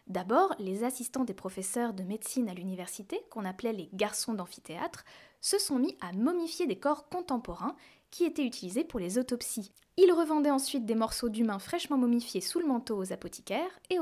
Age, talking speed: 10-29, 180 wpm